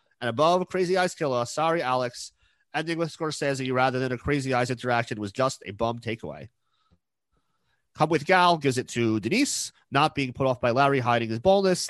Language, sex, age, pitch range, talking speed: English, male, 30-49, 115-155 Hz, 185 wpm